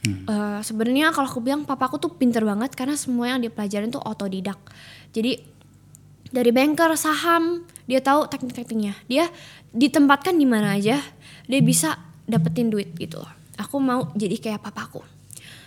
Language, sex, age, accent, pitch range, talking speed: Indonesian, female, 10-29, native, 195-270 Hz, 145 wpm